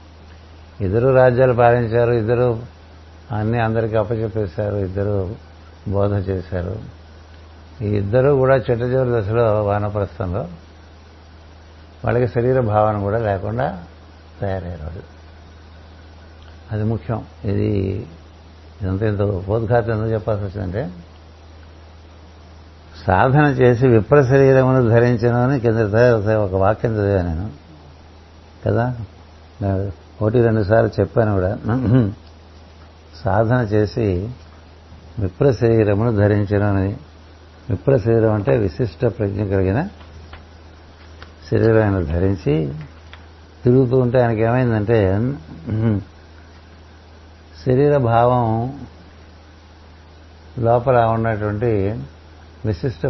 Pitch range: 80-115 Hz